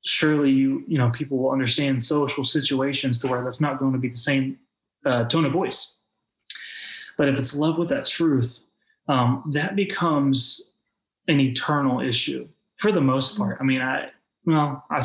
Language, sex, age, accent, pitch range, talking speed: English, male, 20-39, American, 130-155 Hz, 175 wpm